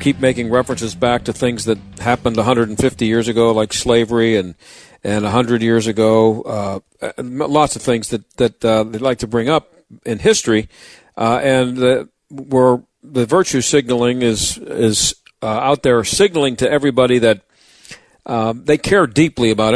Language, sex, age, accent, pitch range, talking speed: English, male, 50-69, American, 115-150 Hz, 160 wpm